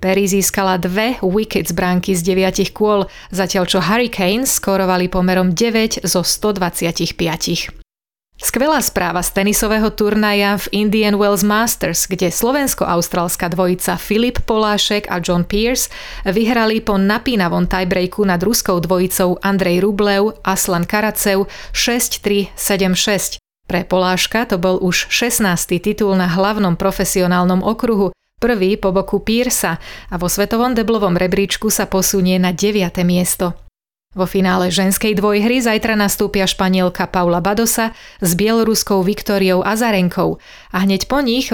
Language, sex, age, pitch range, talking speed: Slovak, female, 30-49, 185-215 Hz, 125 wpm